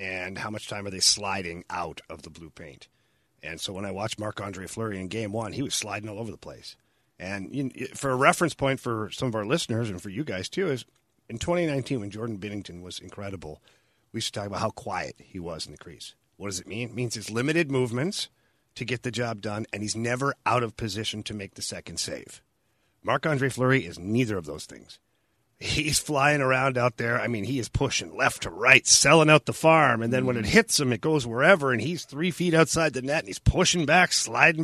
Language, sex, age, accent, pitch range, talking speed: English, male, 40-59, American, 105-160 Hz, 230 wpm